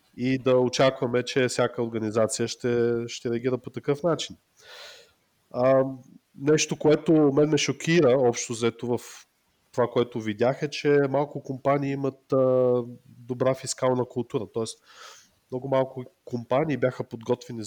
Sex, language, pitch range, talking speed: male, Bulgarian, 115-140 Hz, 125 wpm